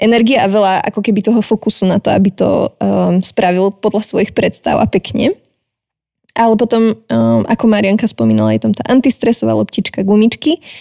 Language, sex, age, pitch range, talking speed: Slovak, female, 20-39, 200-220 Hz, 165 wpm